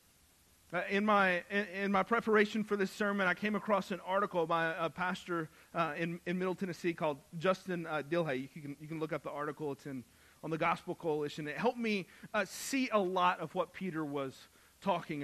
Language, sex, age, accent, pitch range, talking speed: English, male, 40-59, American, 175-225 Hz, 210 wpm